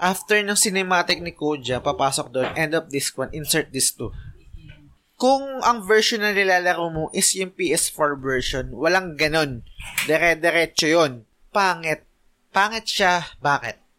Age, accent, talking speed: 20-39, native, 135 wpm